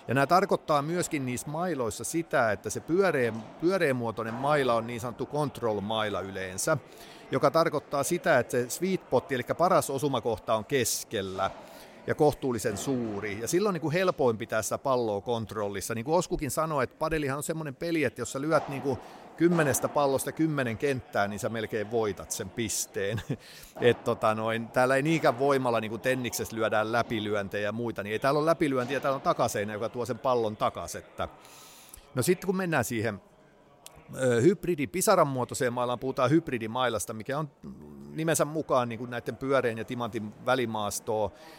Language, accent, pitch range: Finnish, native, 115-155 Hz